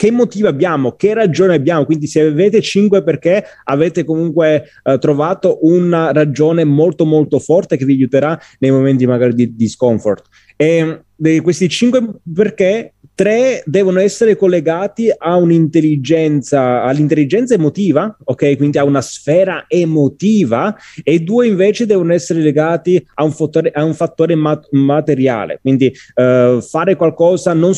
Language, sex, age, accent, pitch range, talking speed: Italian, male, 30-49, native, 145-185 Hz, 145 wpm